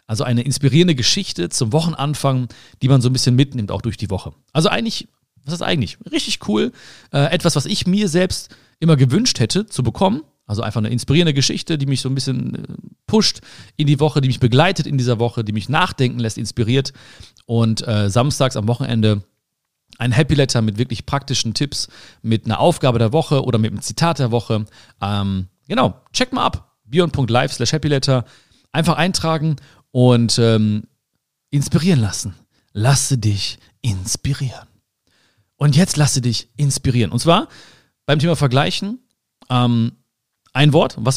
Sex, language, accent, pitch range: male, German, German, 110-145 Hz